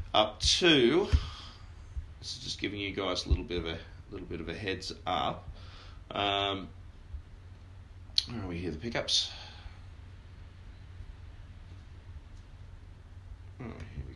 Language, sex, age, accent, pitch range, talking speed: English, male, 30-49, Australian, 85-100 Hz, 120 wpm